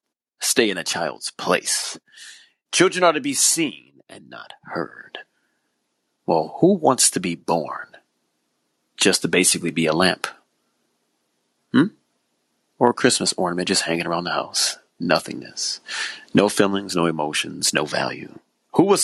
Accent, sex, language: American, male, English